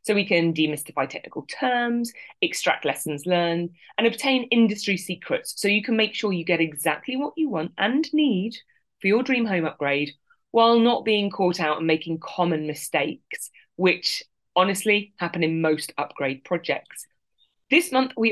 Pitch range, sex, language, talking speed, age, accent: 170-250 Hz, female, English, 165 wpm, 20-39, British